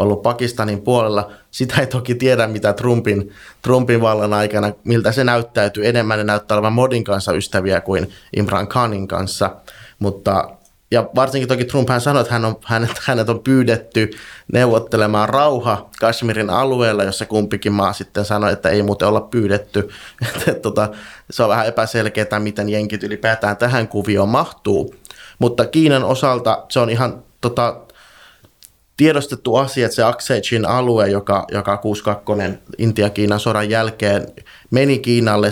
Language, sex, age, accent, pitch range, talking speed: Finnish, male, 20-39, native, 105-120 Hz, 145 wpm